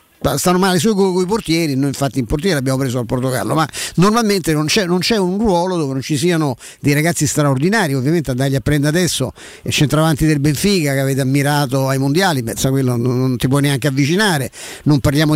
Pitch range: 135-175 Hz